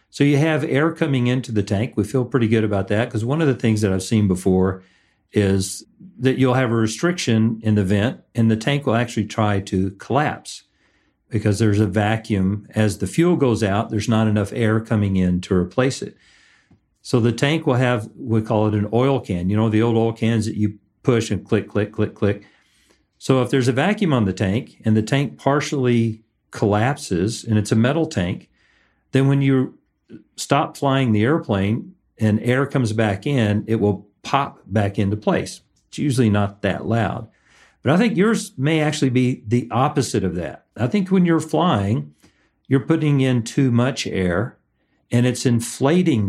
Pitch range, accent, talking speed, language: 105-135 Hz, American, 195 wpm, English